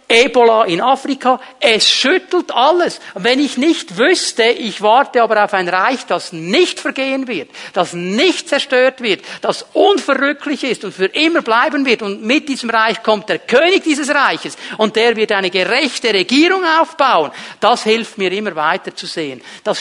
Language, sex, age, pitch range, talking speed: German, male, 50-69, 195-285 Hz, 170 wpm